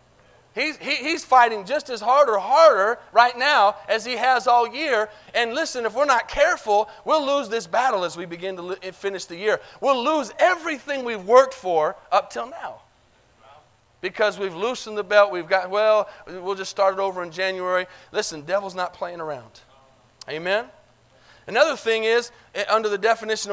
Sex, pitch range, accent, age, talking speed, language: male, 160-235 Hz, American, 30-49, 175 wpm, English